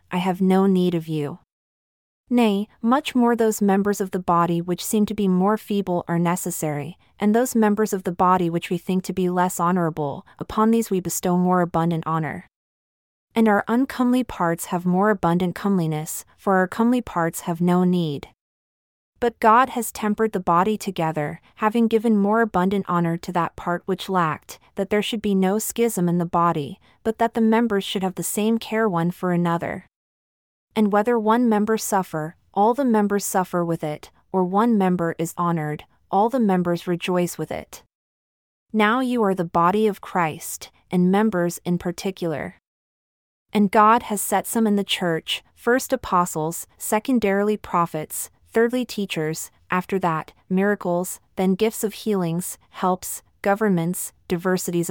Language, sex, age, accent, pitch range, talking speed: English, female, 30-49, American, 175-215 Hz, 165 wpm